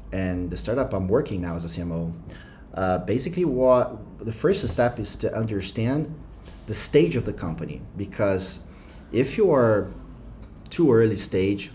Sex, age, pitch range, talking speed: male, 30-49, 90-115 Hz, 155 wpm